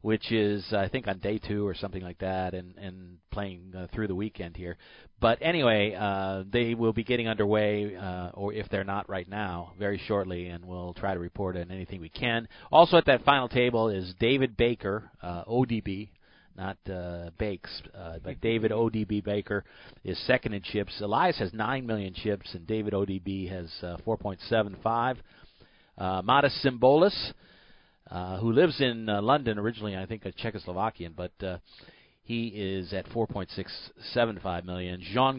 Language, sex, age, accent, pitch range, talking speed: English, male, 40-59, American, 95-115 Hz, 170 wpm